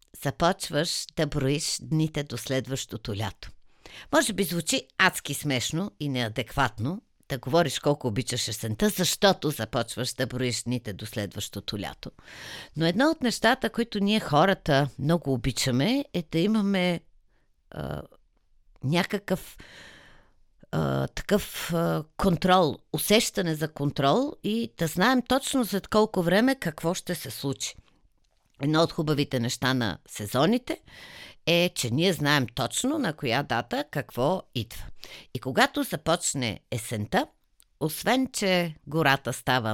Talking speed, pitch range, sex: 125 wpm, 125-185 Hz, female